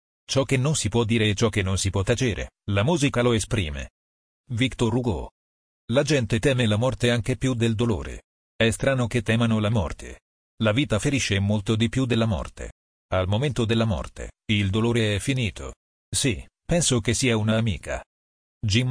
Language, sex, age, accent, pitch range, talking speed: Italian, male, 40-59, native, 95-120 Hz, 180 wpm